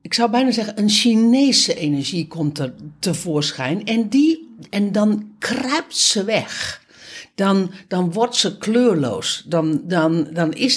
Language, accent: Dutch, Dutch